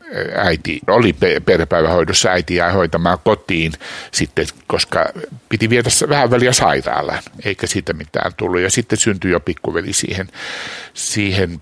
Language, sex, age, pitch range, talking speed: Finnish, male, 60-79, 105-140 Hz, 120 wpm